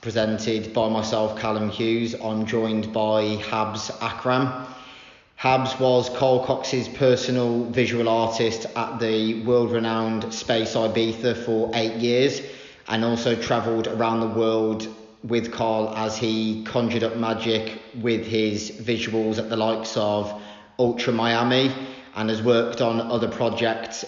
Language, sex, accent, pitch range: English, male, British, 110-120 Hz